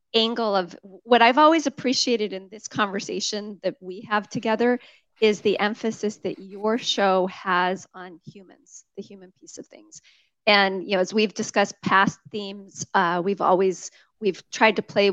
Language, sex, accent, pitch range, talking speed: English, female, American, 180-220 Hz, 165 wpm